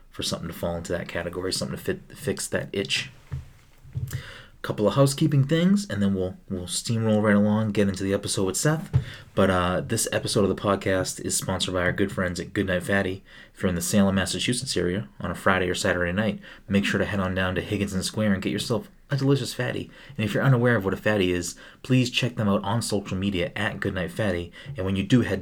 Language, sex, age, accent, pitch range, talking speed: English, male, 30-49, American, 95-115 Hz, 235 wpm